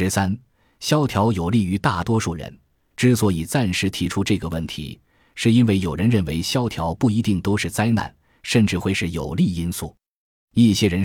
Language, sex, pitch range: Chinese, male, 85-115 Hz